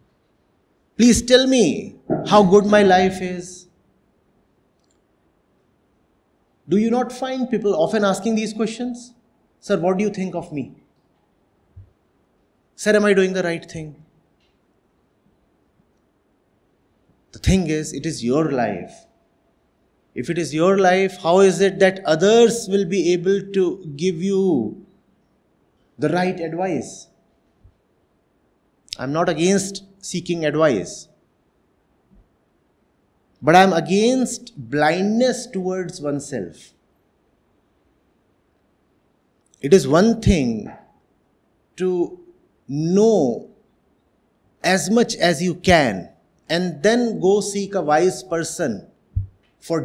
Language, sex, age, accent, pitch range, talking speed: English, male, 30-49, Indian, 165-215 Hz, 105 wpm